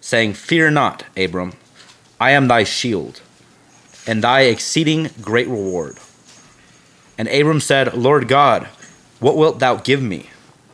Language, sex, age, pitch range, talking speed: English, male, 30-49, 110-140 Hz, 130 wpm